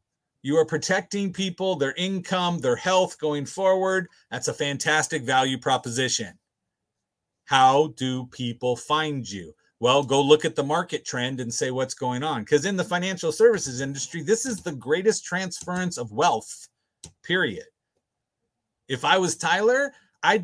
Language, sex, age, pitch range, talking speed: English, male, 40-59, 135-180 Hz, 150 wpm